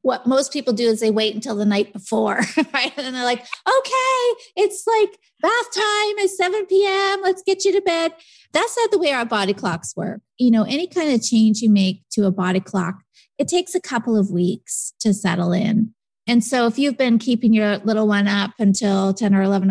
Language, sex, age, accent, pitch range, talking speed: English, female, 30-49, American, 200-250 Hz, 215 wpm